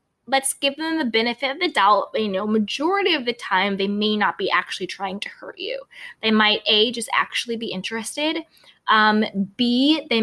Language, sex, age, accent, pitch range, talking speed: English, female, 20-39, American, 190-240 Hz, 195 wpm